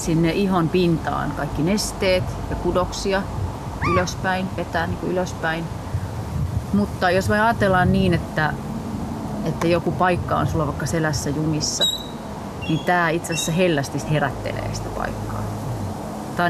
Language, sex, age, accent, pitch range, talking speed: Finnish, female, 30-49, native, 120-165 Hz, 125 wpm